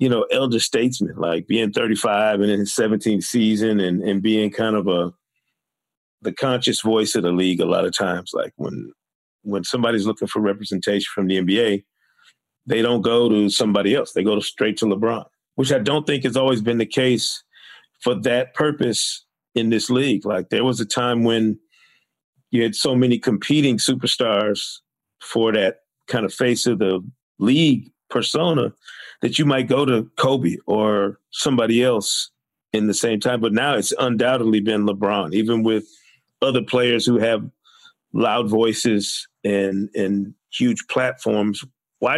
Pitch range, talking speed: 105-125 Hz, 170 wpm